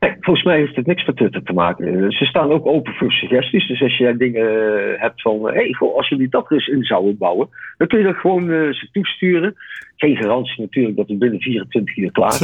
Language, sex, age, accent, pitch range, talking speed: Dutch, male, 50-69, Dutch, 110-150 Hz, 230 wpm